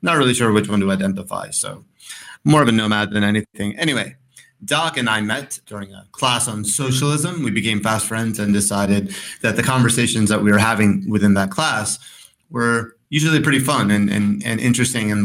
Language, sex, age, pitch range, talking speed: English, male, 30-49, 105-130 Hz, 195 wpm